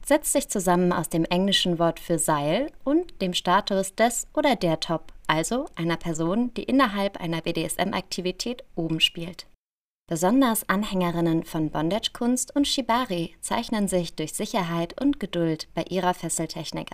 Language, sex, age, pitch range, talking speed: German, female, 20-39, 165-230 Hz, 140 wpm